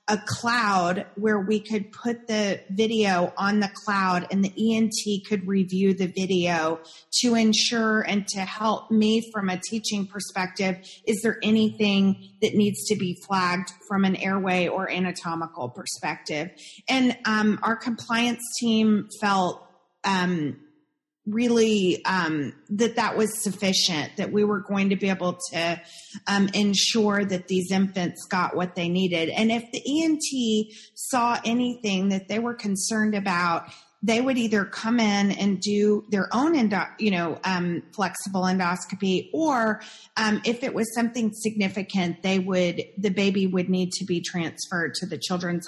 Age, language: 30-49, English